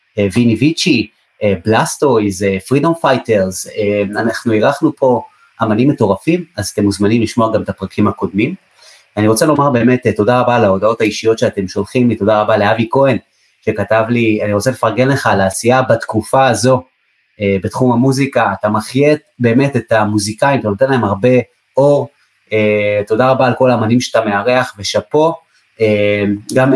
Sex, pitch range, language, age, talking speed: male, 105-135 Hz, Hebrew, 30-49, 150 wpm